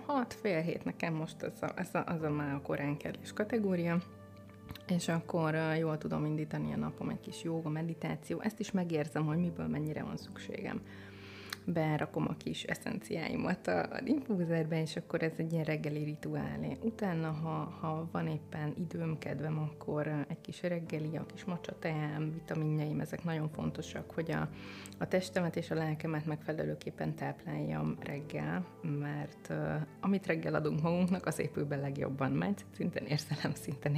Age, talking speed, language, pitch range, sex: 20-39, 150 wpm, Hungarian, 140-165 Hz, female